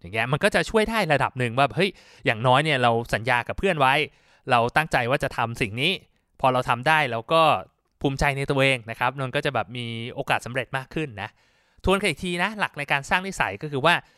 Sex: male